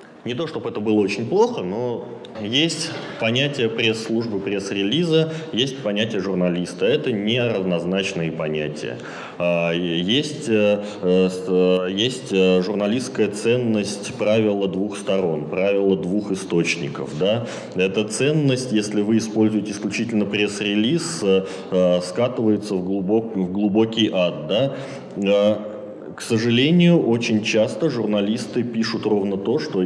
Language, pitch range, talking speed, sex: Russian, 95-115 Hz, 95 wpm, male